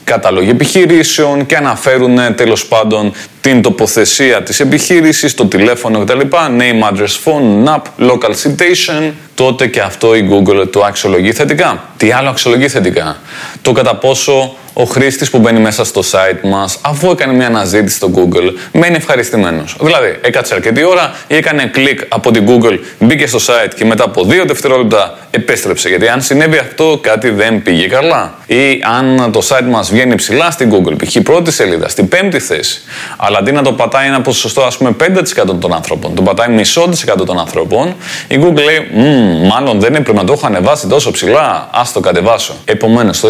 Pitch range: 110-140 Hz